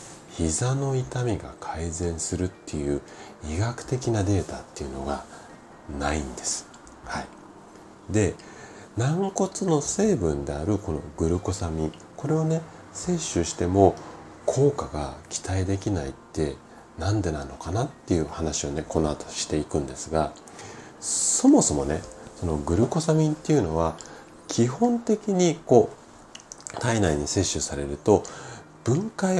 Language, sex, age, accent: Japanese, male, 40-59, native